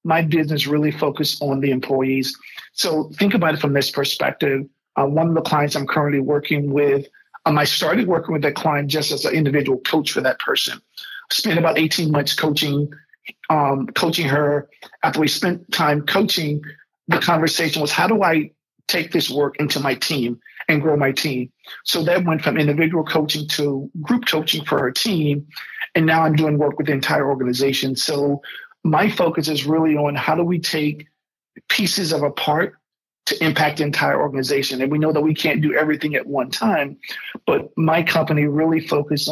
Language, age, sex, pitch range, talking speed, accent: English, 50-69, male, 145-160 Hz, 190 wpm, American